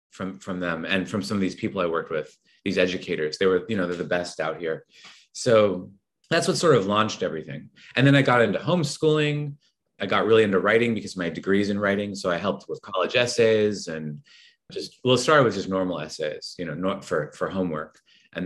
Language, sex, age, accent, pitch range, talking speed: English, male, 30-49, American, 95-125 Hz, 225 wpm